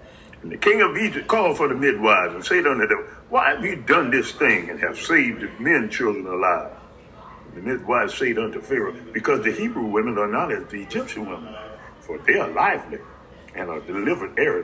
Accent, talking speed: American, 205 wpm